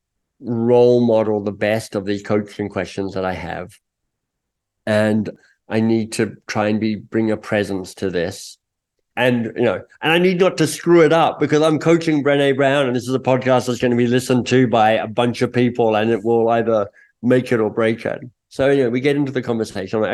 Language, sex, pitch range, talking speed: English, male, 105-125 Hz, 220 wpm